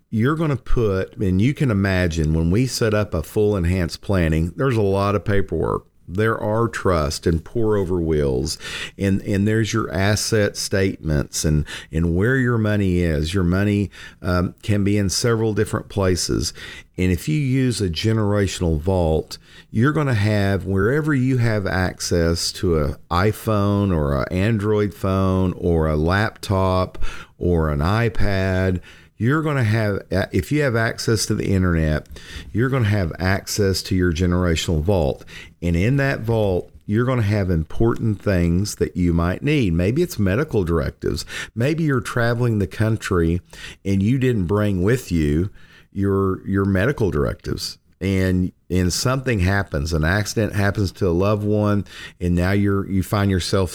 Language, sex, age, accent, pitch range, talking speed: English, male, 50-69, American, 85-110 Hz, 165 wpm